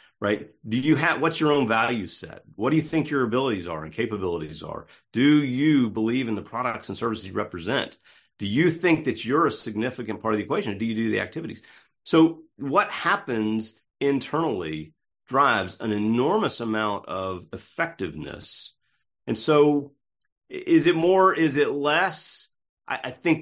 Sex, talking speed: male, 170 wpm